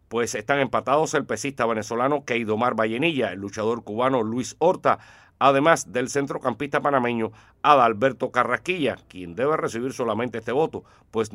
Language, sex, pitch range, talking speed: Spanish, male, 110-140 Hz, 135 wpm